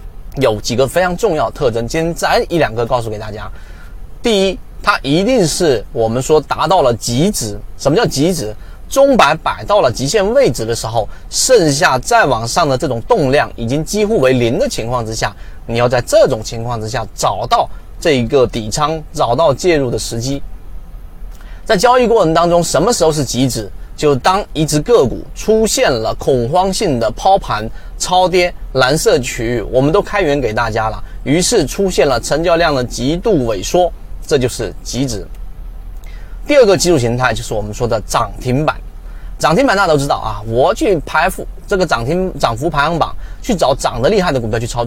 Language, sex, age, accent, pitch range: Chinese, male, 30-49, native, 110-165 Hz